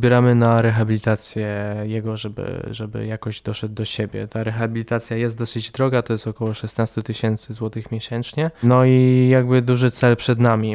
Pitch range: 110-120 Hz